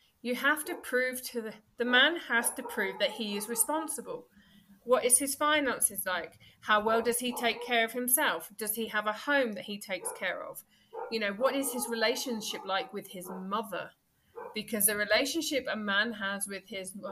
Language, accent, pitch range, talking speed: English, British, 195-270 Hz, 195 wpm